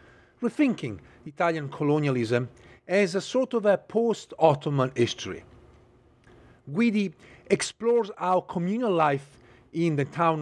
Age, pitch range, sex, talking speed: 40-59, 130-195 Hz, male, 105 wpm